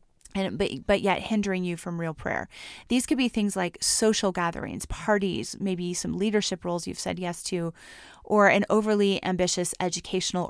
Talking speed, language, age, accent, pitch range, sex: 170 wpm, English, 30-49, American, 175-205 Hz, female